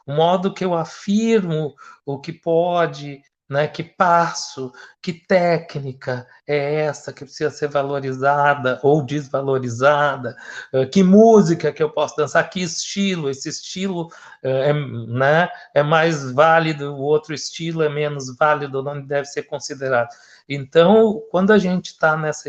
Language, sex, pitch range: Portuguese, male, 145-185 Hz